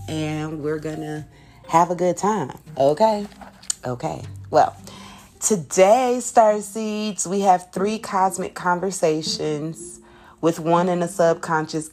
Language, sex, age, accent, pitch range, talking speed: English, female, 30-49, American, 155-195 Hz, 120 wpm